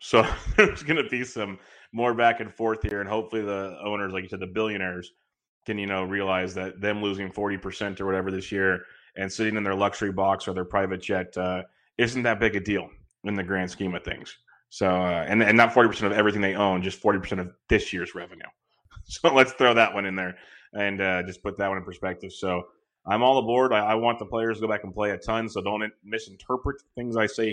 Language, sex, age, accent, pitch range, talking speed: English, male, 20-39, American, 95-110 Hz, 230 wpm